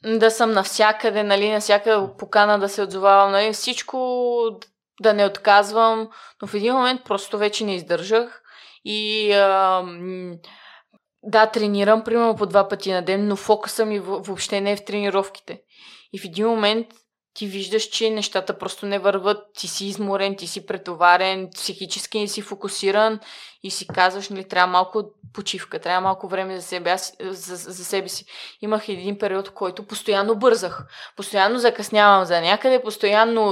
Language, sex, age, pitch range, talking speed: Bulgarian, female, 20-39, 195-225 Hz, 160 wpm